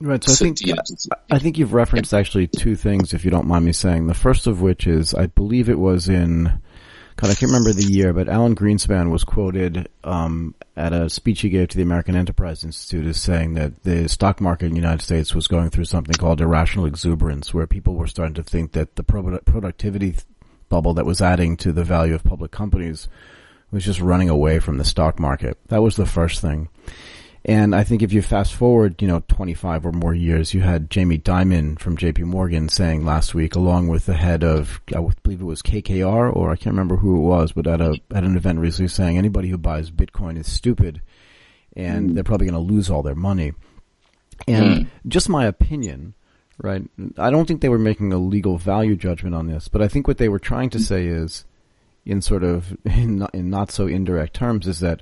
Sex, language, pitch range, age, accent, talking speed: male, English, 85-100 Hz, 40-59, American, 220 wpm